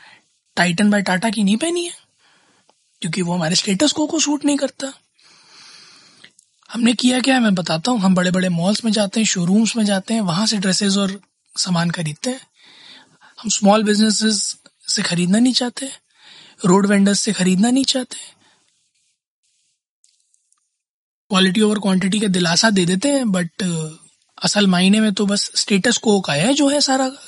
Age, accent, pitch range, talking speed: 20-39, native, 180-225 Hz, 165 wpm